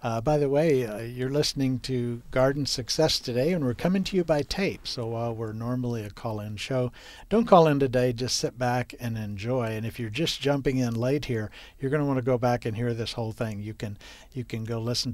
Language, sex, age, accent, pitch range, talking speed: English, male, 60-79, American, 110-135 Hz, 240 wpm